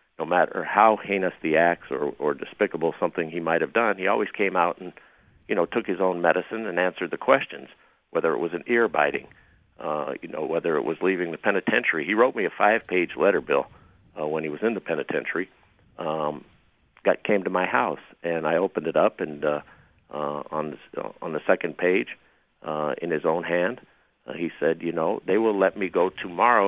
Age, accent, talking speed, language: 50-69, American, 210 wpm, English